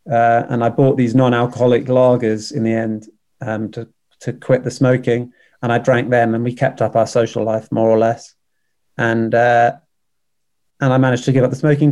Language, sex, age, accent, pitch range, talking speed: English, male, 30-49, British, 115-130 Hz, 200 wpm